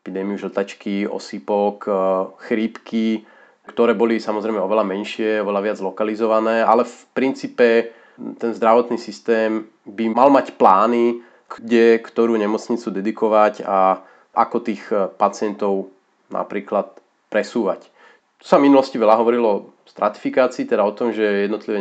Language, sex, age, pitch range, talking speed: Slovak, male, 30-49, 105-115 Hz, 125 wpm